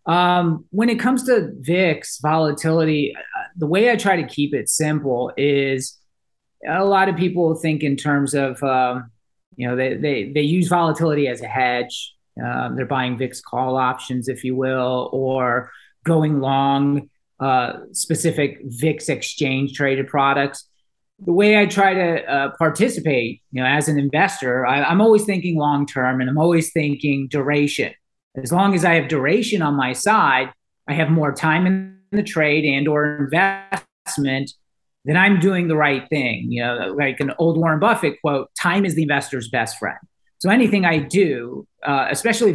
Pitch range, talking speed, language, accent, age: 135-175 Hz, 170 wpm, English, American, 30-49